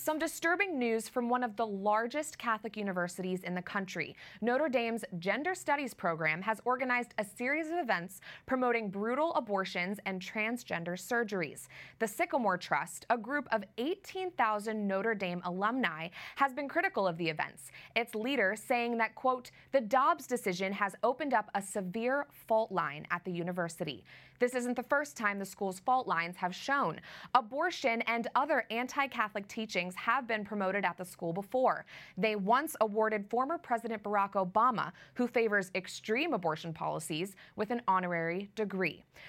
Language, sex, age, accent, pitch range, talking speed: English, female, 20-39, American, 185-250 Hz, 155 wpm